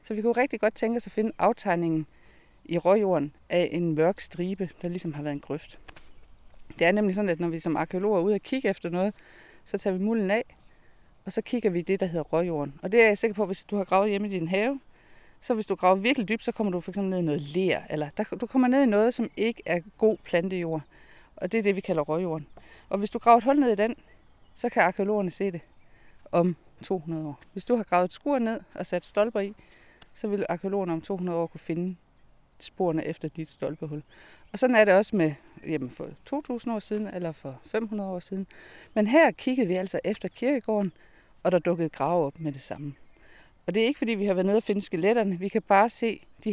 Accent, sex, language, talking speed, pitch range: native, female, Danish, 235 wpm, 170-215 Hz